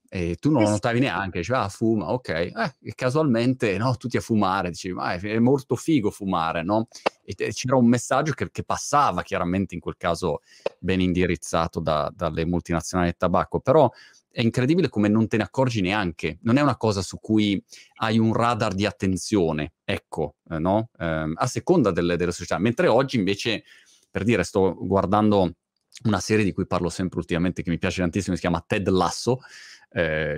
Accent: native